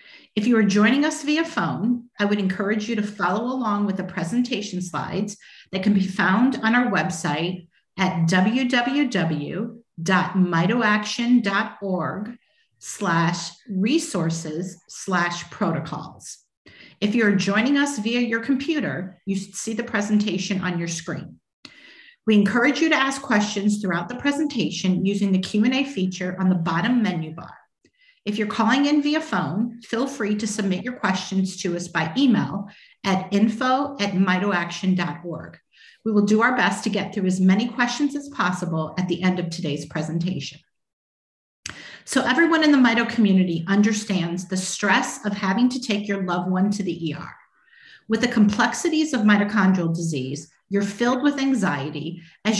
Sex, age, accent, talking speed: female, 40-59, American, 150 wpm